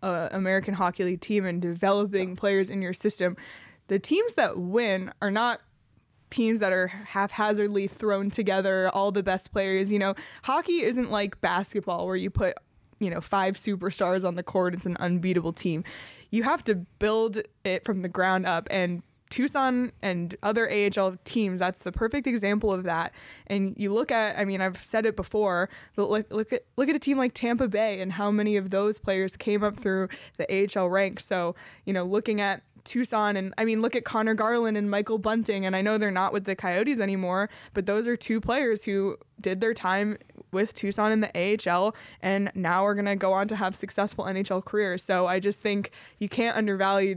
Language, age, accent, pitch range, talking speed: English, 20-39, American, 185-215 Hz, 200 wpm